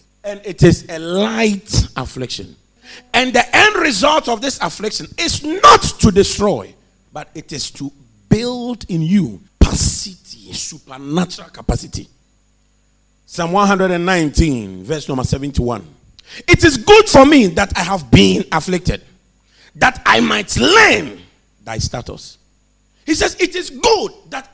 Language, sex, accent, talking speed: English, male, Nigerian, 130 wpm